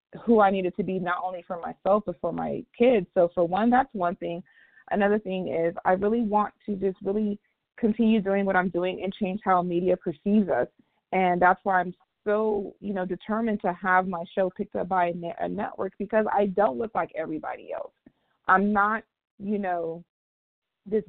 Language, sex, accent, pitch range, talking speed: English, female, American, 180-215 Hz, 195 wpm